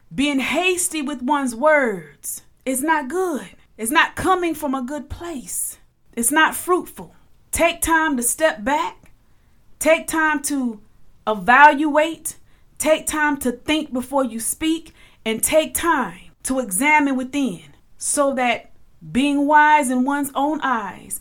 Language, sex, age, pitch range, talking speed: English, female, 30-49, 215-270 Hz, 135 wpm